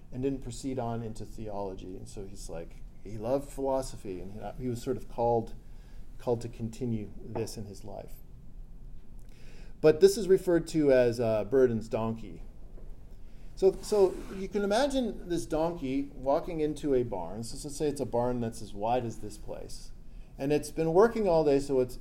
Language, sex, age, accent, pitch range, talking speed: English, male, 40-59, American, 120-170 Hz, 175 wpm